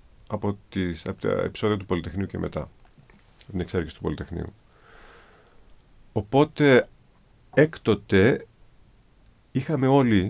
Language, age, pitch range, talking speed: Greek, 50-69, 90-115 Hz, 100 wpm